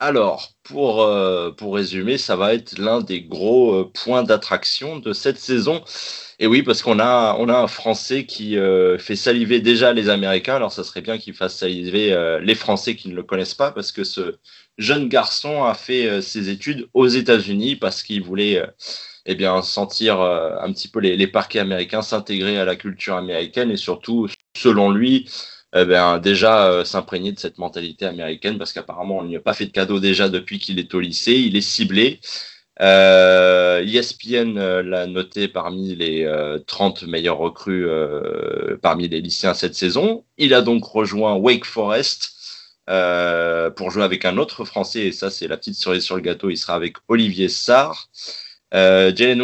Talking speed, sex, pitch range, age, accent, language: 190 wpm, male, 90-115 Hz, 20-39, French, French